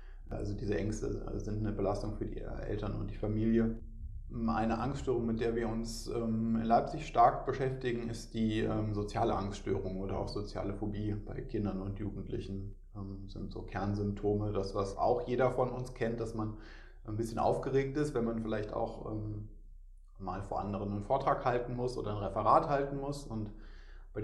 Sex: male